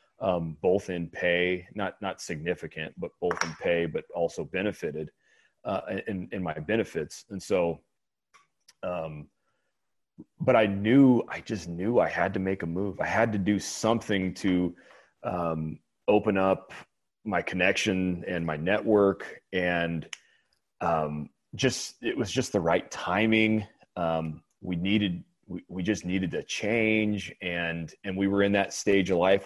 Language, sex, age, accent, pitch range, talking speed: English, male, 30-49, American, 85-105 Hz, 150 wpm